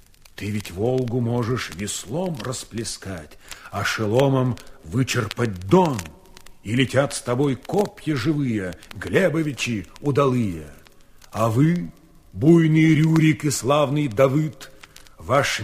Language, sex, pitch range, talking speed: Russian, male, 105-145 Hz, 100 wpm